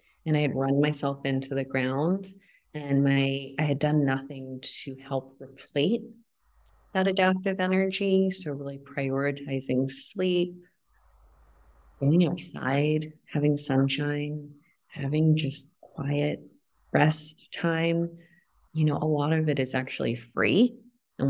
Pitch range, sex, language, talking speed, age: 130-165 Hz, female, English, 120 wpm, 30-49